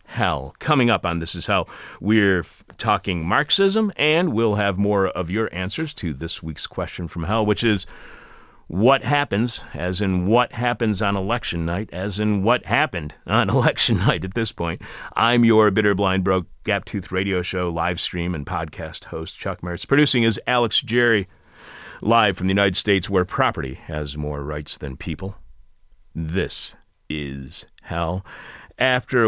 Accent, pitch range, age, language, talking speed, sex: American, 85-115 Hz, 40-59, English, 165 wpm, male